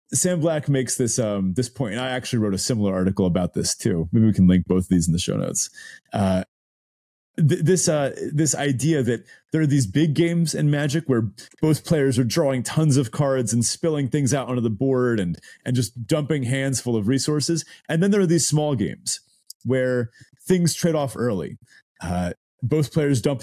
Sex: male